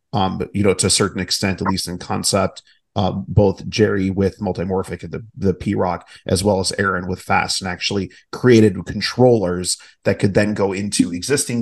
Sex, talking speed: male, 195 wpm